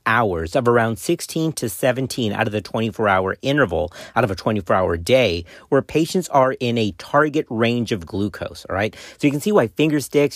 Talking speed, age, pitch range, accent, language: 195 wpm, 40-59, 105-135 Hz, American, English